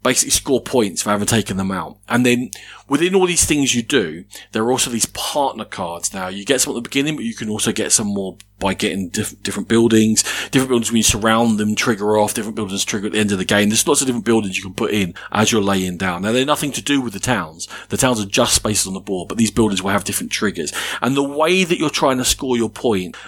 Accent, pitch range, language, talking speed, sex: British, 105-140 Hz, English, 265 wpm, male